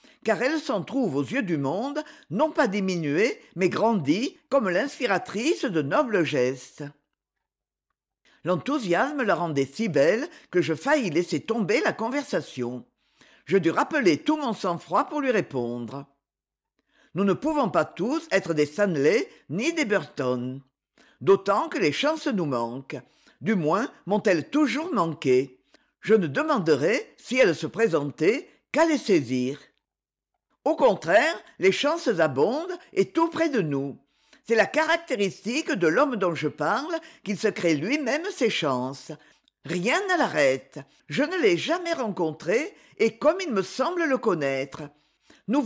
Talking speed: 145 wpm